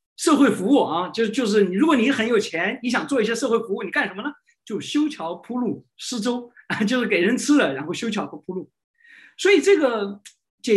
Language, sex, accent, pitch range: Chinese, male, native, 230-370 Hz